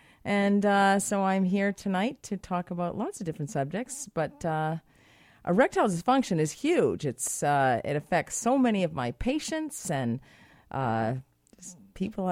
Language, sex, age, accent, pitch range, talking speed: English, female, 40-59, American, 160-230 Hz, 155 wpm